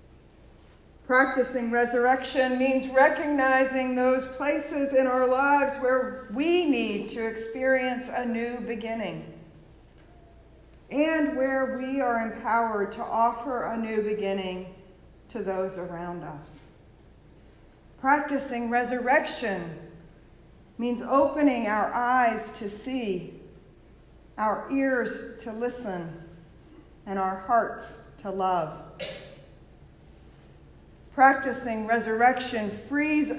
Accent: American